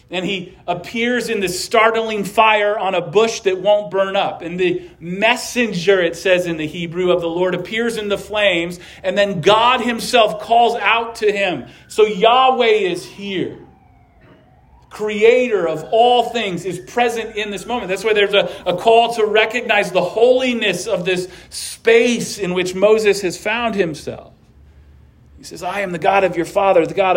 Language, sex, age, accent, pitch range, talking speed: English, male, 40-59, American, 175-210 Hz, 175 wpm